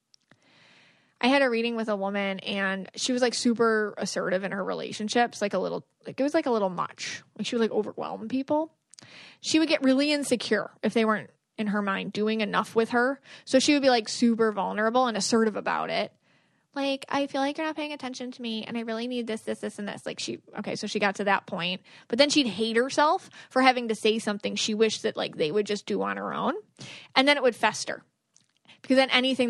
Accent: American